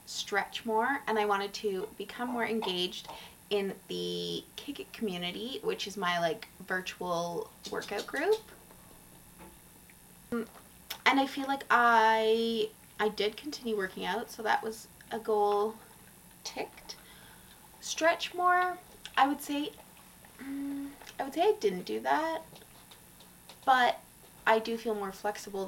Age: 20-39